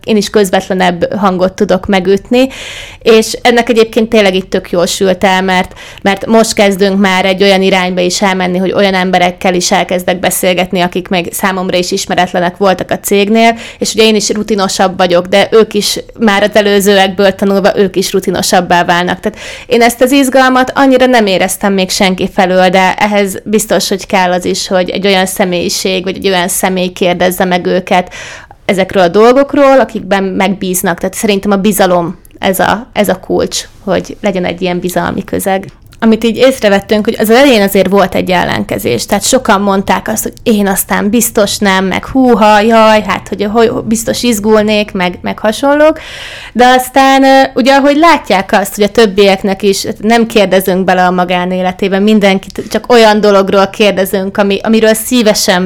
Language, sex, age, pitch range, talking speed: Hungarian, female, 30-49, 185-220 Hz, 170 wpm